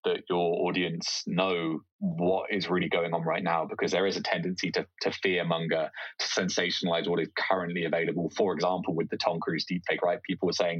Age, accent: 20-39, British